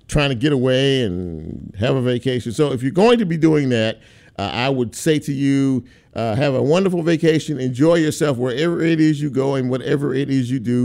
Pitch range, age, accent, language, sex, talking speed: 120-155 Hz, 50-69, American, English, male, 220 wpm